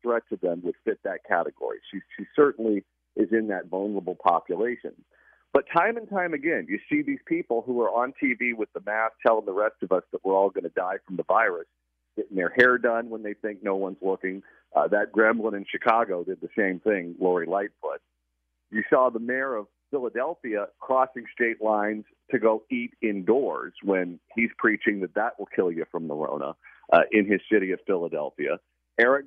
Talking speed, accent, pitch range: 200 wpm, American, 100-135 Hz